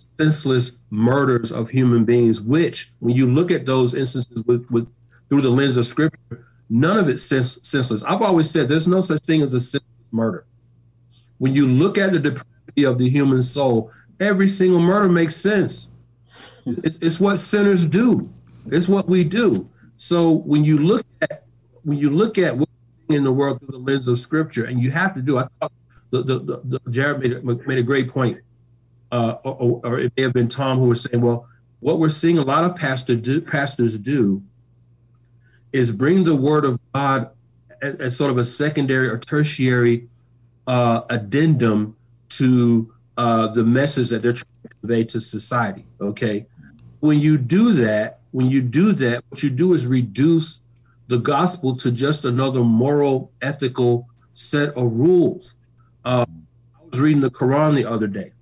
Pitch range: 120-150 Hz